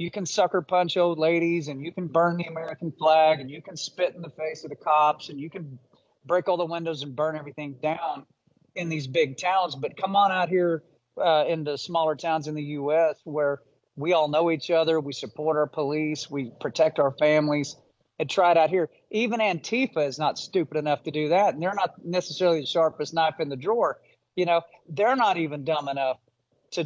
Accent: American